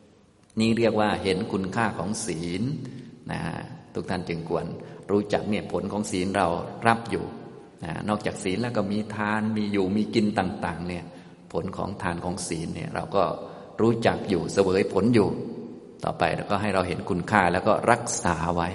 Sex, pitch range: male, 85-105 Hz